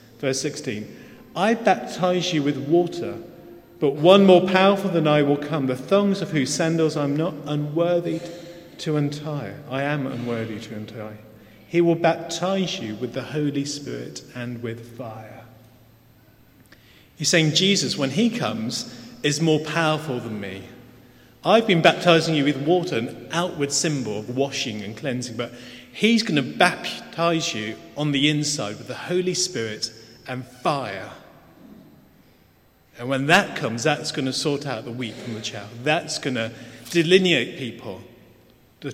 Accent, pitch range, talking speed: British, 120-165 Hz, 155 wpm